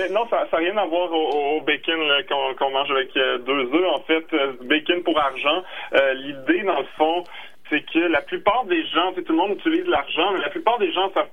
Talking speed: 240 wpm